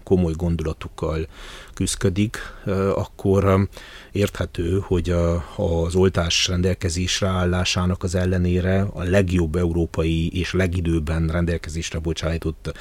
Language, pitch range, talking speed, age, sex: Hungarian, 85-95 Hz, 90 wpm, 30-49, male